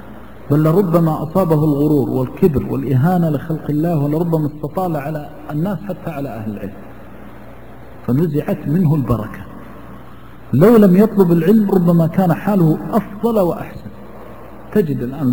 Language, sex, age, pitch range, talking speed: Arabic, male, 50-69, 140-190 Hz, 115 wpm